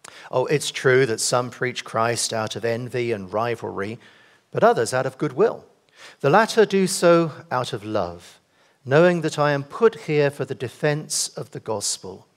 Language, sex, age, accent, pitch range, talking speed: English, male, 50-69, British, 125-180 Hz, 175 wpm